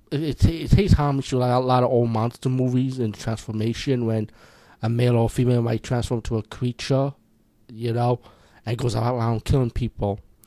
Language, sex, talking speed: English, male, 190 wpm